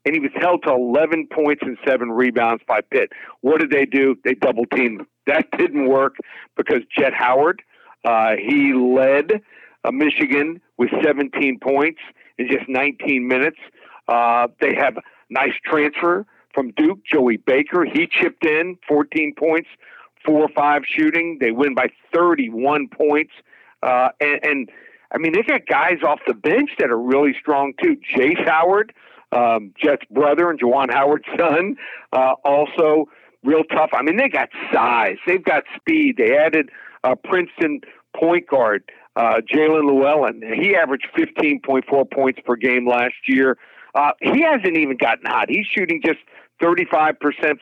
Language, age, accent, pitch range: English, 50-69, American, 135-180 Hz